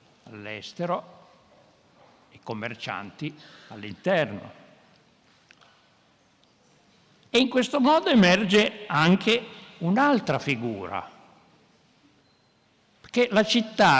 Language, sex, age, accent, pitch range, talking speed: Italian, male, 60-79, native, 135-195 Hz, 65 wpm